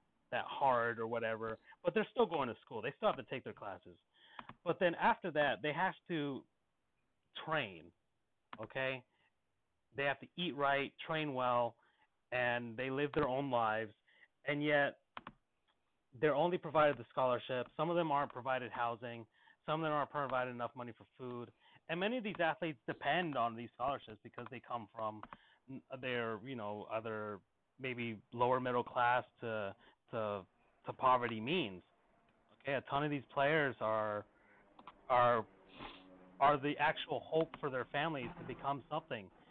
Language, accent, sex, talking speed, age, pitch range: English, American, male, 160 wpm, 30-49, 115-150 Hz